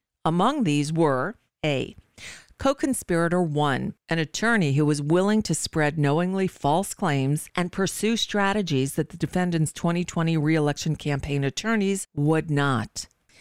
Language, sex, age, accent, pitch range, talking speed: English, female, 50-69, American, 145-185 Hz, 125 wpm